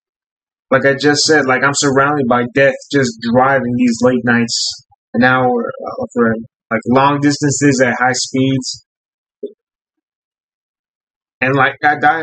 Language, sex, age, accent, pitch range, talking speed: English, male, 20-39, American, 130-175 Hz, 130 wpm